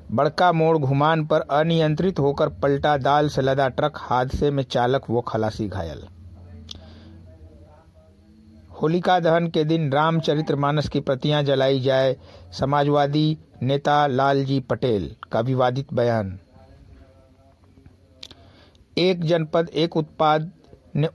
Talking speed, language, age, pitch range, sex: 110 wpm, Hindi, 60-79, 120-155 Hz, male